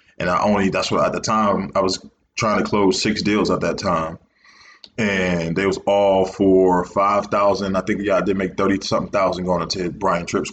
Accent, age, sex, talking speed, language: American, 20-39, male, 215 wpm, English